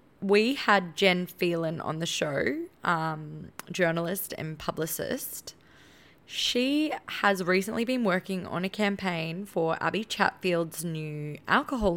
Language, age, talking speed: English, 20-39, 120 wpm